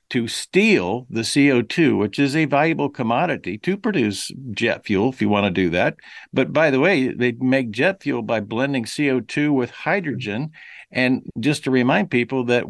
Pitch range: 105-135 Hz